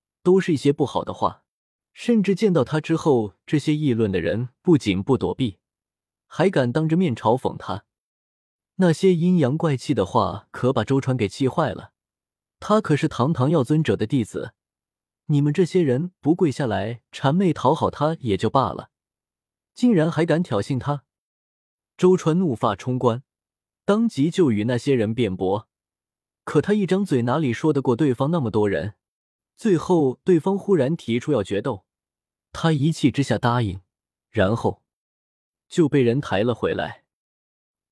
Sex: male